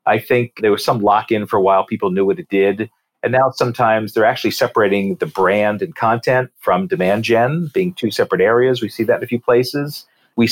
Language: English